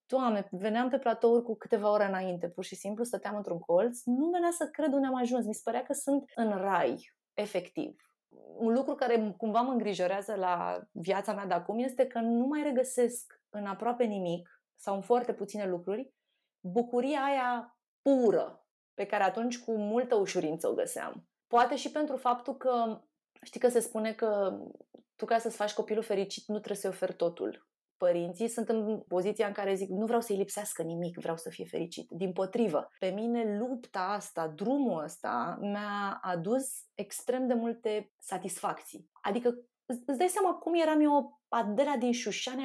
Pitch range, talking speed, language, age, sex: 200-255 Hz, 175 wpm, Romanian, 30-49, female